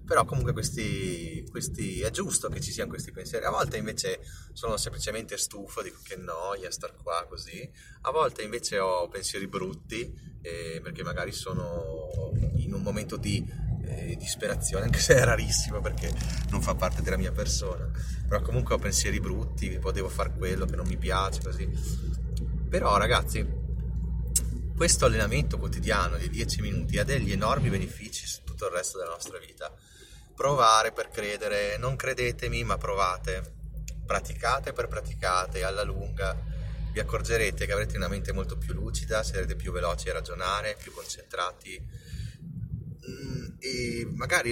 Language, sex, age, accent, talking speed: Italian, male, 30-49, native, 150 wpm